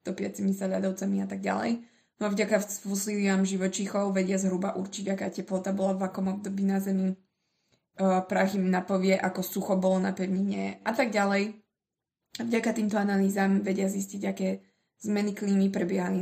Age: 20-39